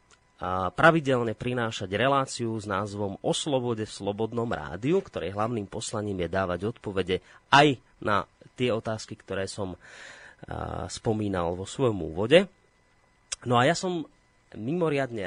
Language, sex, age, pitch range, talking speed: Slovak, male, 30-49, 95-120 Hz, 130 wpm